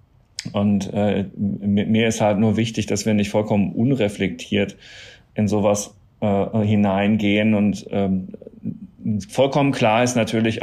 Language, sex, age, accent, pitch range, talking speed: German, male, 40-59, German, 95-110 Hz, 125 wpm